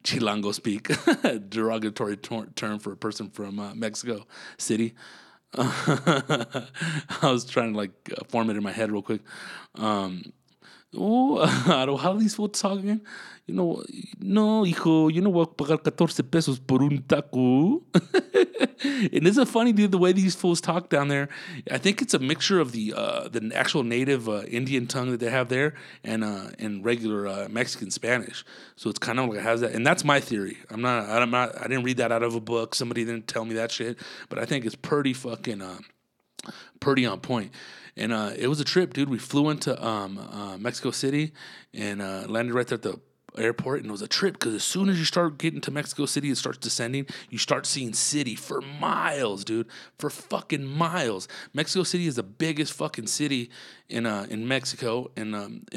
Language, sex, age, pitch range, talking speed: English, male, 30-49, 115-160 Hz, 200 wpm